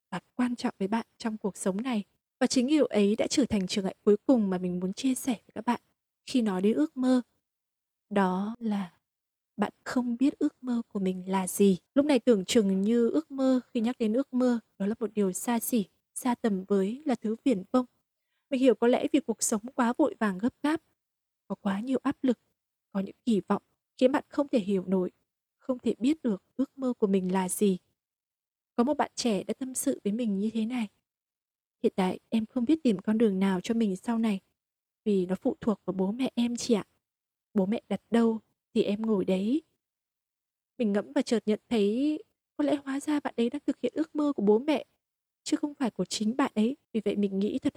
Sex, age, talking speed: female, 20-39, 225 wpm